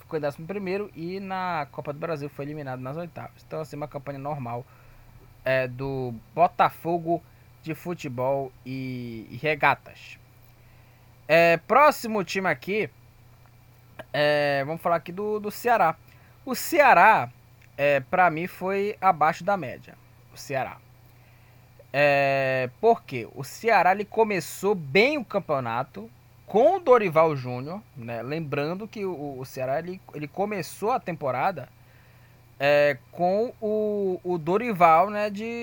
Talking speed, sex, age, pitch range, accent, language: 125 wpm, male, 20-39, 125-180 Hz, Brazilian, Portuguese